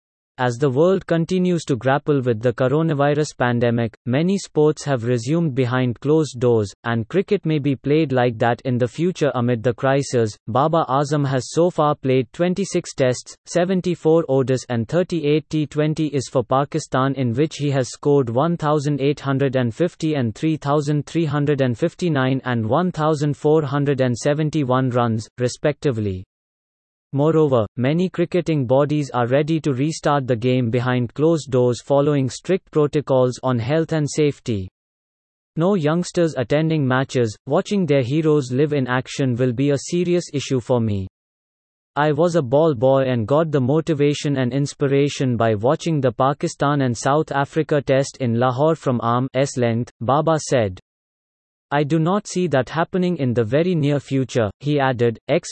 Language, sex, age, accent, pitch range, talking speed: English, male, 30-49, Indian, 125-155 Hz, 145 wpm